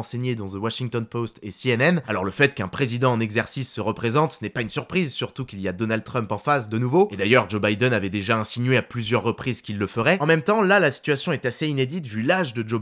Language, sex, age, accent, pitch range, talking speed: French, male, 20-39, French, 115-155 Hz, 265 wpm